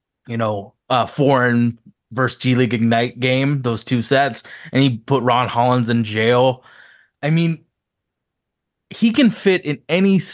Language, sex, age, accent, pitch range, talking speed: English, male, 20-39, American, 120-150 Hz, 145 wpm